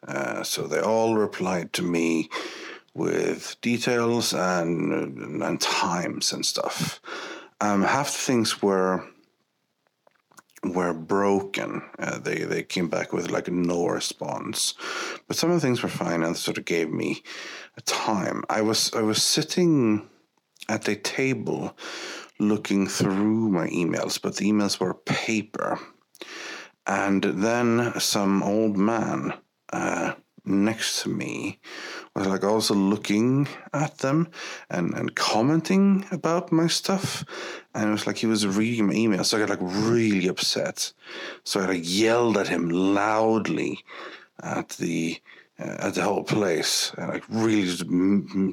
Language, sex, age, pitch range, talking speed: English, male, 50-69, 100-135 Hz, 145 wpm